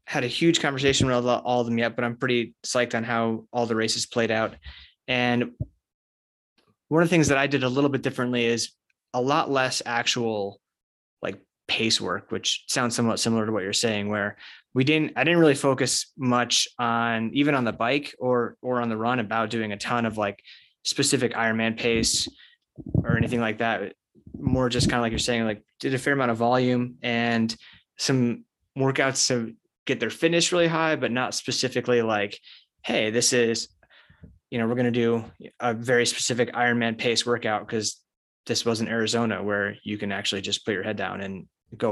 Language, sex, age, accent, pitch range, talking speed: English, male, 20-39, American, 110-125 Hz, 195 wpm